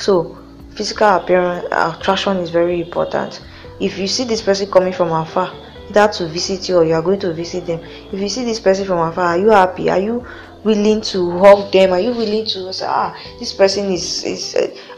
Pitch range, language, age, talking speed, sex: 180-230 Hz, English, 20-39, 210 wpm, female